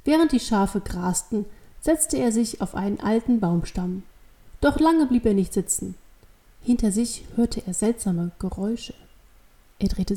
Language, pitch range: German, 190-235 Hz